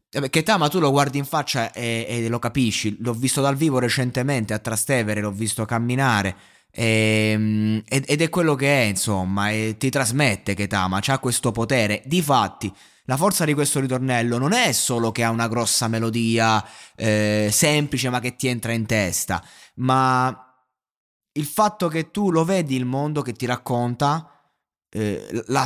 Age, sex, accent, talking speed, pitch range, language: 20-39, male, native, 165 wpm, 110-145 Hz, Italian